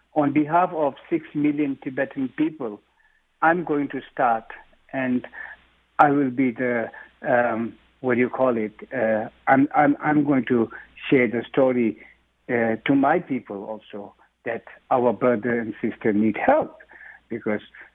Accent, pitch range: Indian, 125-155 Hz